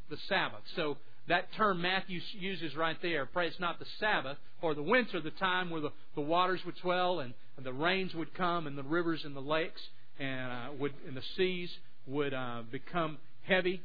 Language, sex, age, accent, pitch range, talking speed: English, male, 50-69, American, 145-180 Hz, 200 wpm